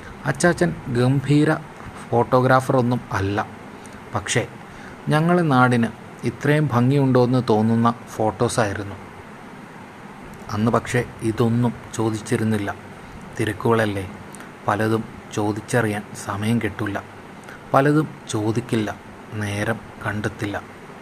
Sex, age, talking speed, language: male, 30-49, 70 wpm, Malayalam